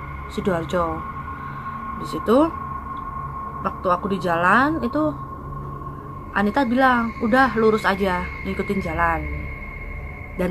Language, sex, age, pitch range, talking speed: Indonesian, female, 20-39, 170-240 Hz, 90 wpm